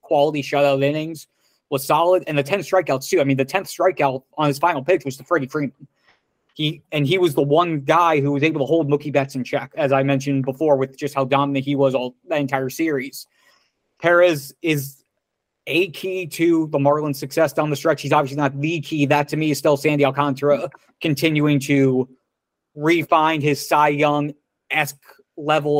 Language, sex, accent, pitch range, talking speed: English, male, American, 140-155 Hz, 195 wpm